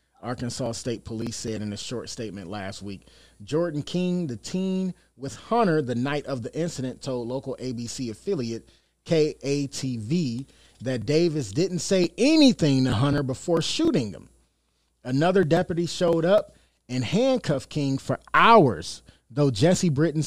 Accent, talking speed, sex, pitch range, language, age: American, 140 wpm, male, 120-165 Hz, English, 30-49